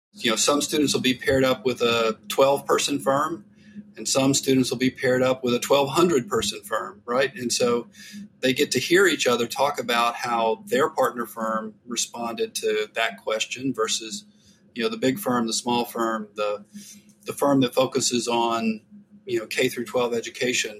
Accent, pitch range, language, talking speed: American, 115-155 Hz, English, 190 wpm